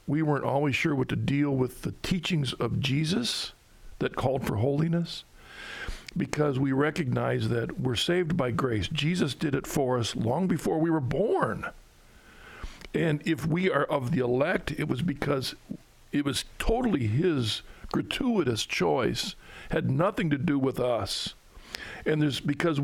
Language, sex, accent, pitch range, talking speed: English, male, American, 125-155 Hz, 150 wpm